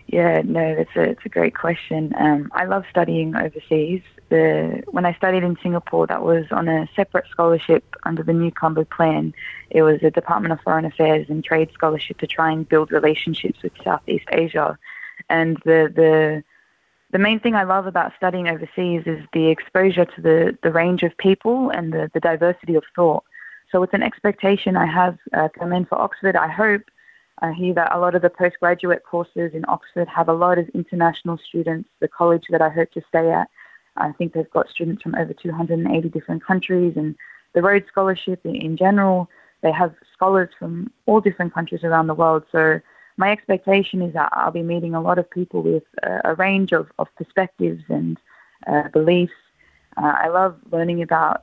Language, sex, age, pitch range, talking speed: Arabic, female, 20-39, 160-180 Hz, 190 wpm